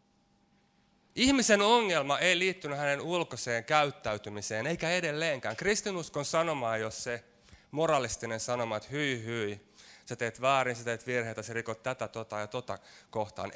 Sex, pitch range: male, 115-155 Hz